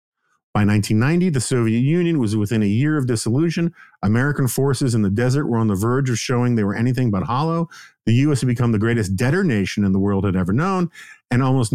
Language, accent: English, American